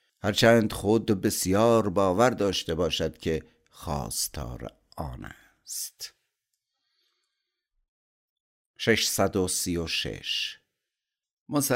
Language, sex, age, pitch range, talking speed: Persian, male, 50-69, 90-115 Hz, 55 wpm